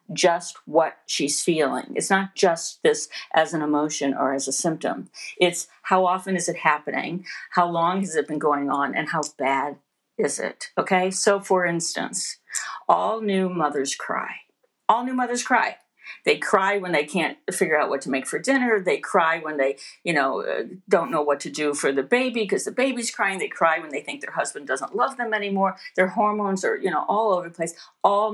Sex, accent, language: female, American, English